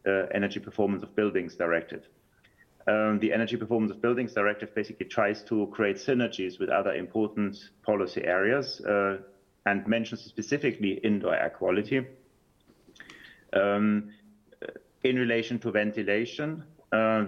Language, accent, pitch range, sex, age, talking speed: English, German, 105-120 Hz, male, 40-59, 125 wpm